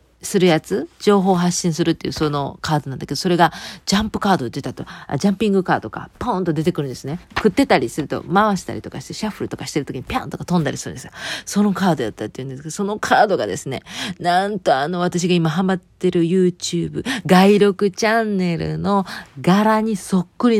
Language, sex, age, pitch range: Japanese, female, 40-59, 150-200 Hz